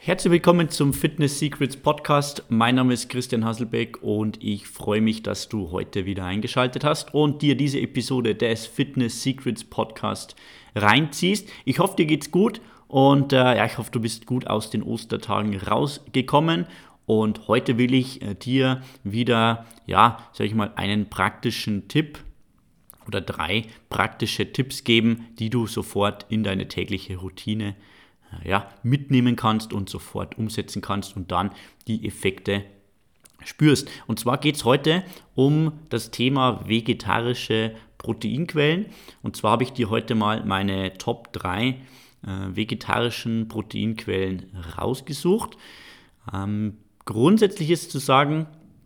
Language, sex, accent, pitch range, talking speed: German, male, German, 105-130 Hz, 140 wpm